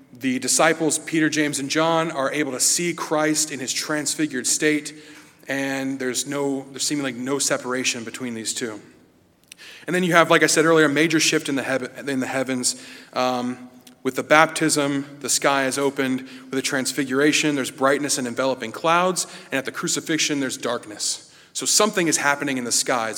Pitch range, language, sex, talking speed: 130-155 Hz, English, male, 175 wpm